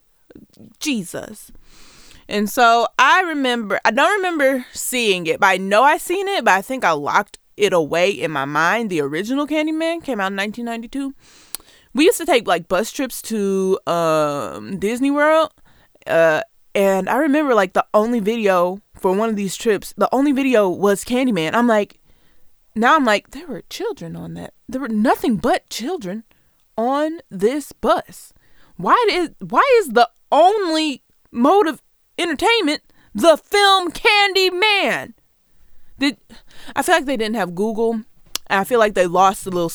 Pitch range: 195-290 Hz